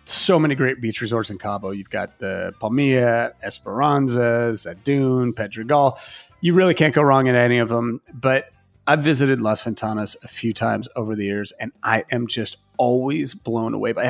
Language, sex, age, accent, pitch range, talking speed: English, male, 30-49, American, 115-150 Hz, 180 wpm